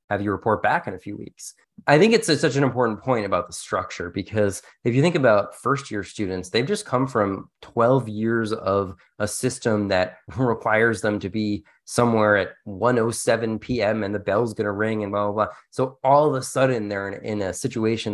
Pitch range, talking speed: 105-135 Hz, 220 wpm